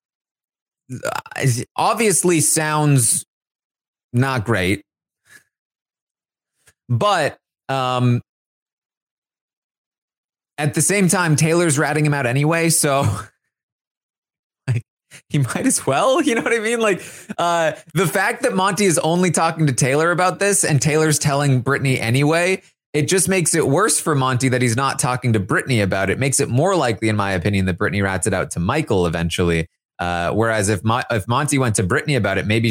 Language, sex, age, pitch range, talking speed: English, male, 30-49, 100-155 Hz, 160 wpm